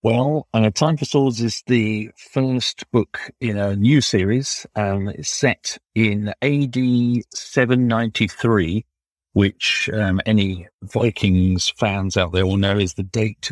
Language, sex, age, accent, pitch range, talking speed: English, male, 50-69, British, 100-115 Hz, 145 wpm